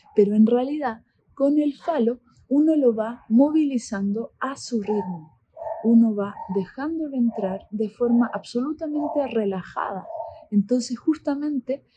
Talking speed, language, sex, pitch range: 120 wpm, Spanish, female, 205-265 Hz